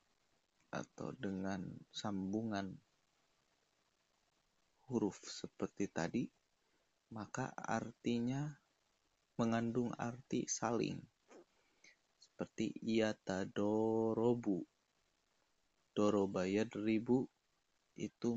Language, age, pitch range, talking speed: Indonesian, 20-39, 100-120 Hz, 55 wpm